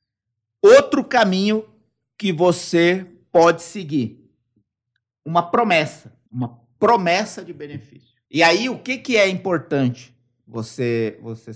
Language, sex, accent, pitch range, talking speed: Portuguese, male, Brazilian, 120-170 Hz, 110 wpm